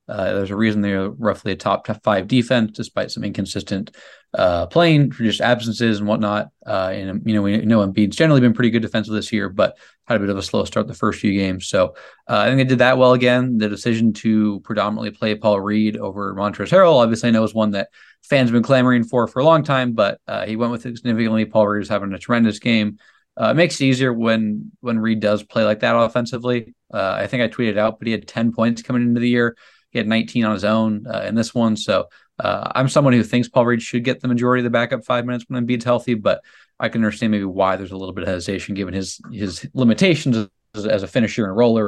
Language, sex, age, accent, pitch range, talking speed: English, male, 20-39, American, 105-125 Hz, 250 wpm